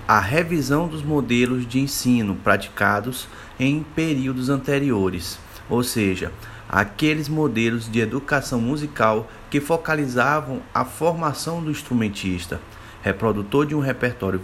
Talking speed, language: 110 wpm, Portuguese